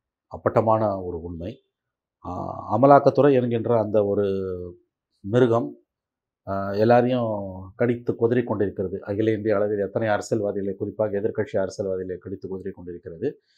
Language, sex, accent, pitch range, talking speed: Tamil, male, native, 100-120 Hz, 95 wpm